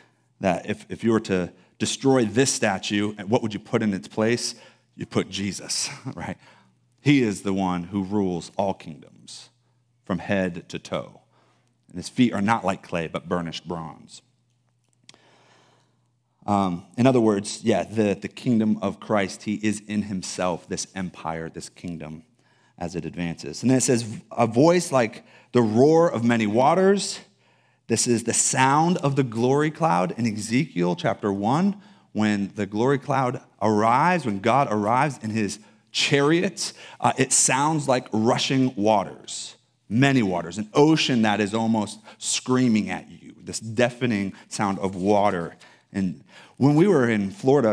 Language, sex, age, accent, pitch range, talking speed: English, male, 30-49, American, 100-125 Hz, 155 wpm